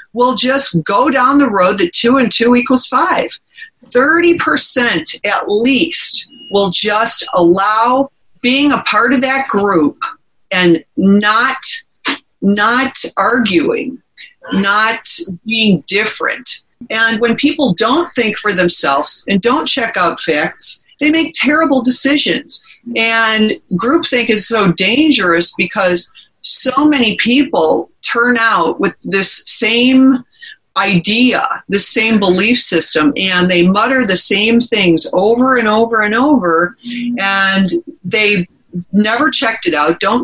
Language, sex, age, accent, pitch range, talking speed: English, female, 40-59, American, 195-270 Hz, 125 wpm